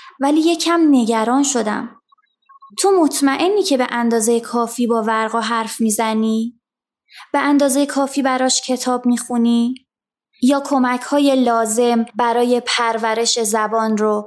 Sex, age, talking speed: female, 20-39, 125 wpm